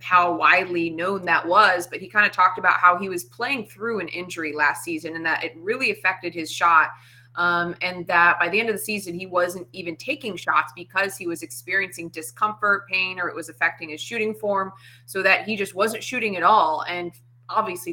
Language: English